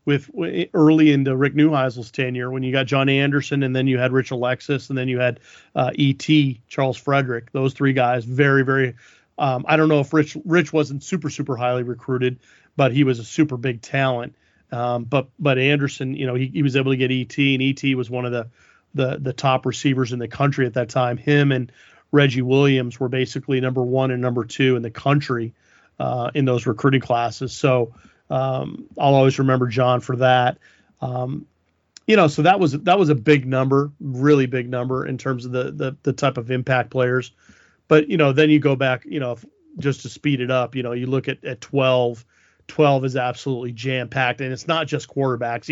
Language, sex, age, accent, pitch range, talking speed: English, male, 40-59, American, 125-140 Hz, 210 wpm